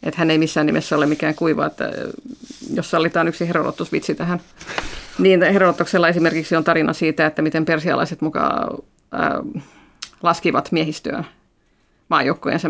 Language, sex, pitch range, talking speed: Finnish, female, 155-175 Hz, 125 wpm